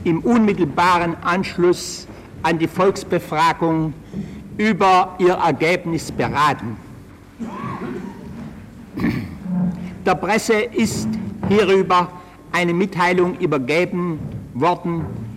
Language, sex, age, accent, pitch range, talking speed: German, male, 60-79, German, 160-195 Hz, 70 wpm